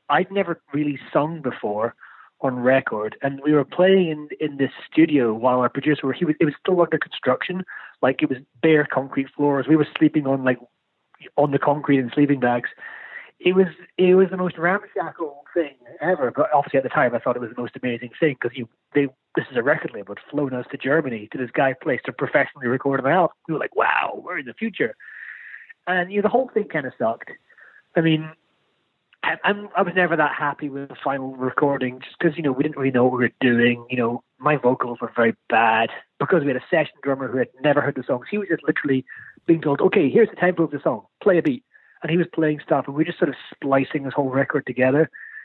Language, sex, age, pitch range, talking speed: English, male, 30-49, 130-165 Hz, 235 wpm